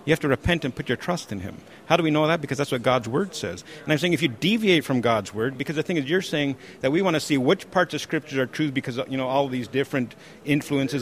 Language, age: English, 50-69